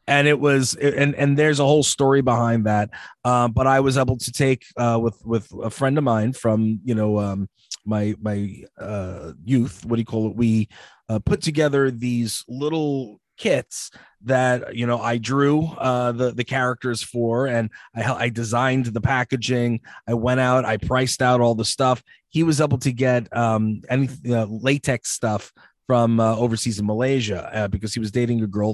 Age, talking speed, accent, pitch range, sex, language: 30-49, 190 wpm, American, 115-135 Hz, male, English